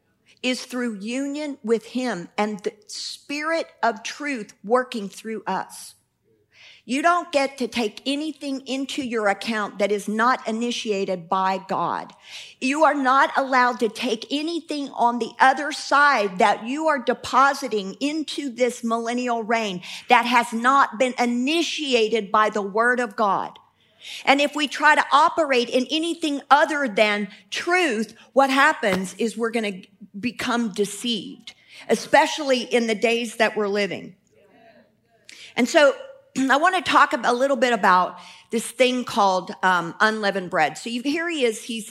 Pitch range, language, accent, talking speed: 205-270 Hz, English, American, 150 wpm